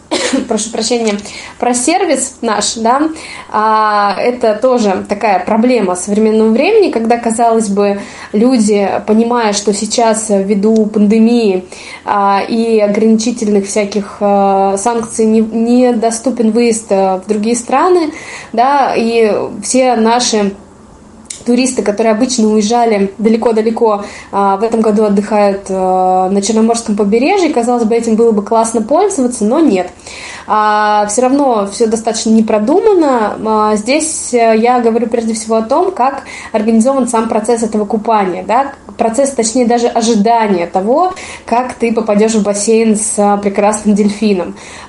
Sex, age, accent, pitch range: female, 20-39, native, 210-245 Hz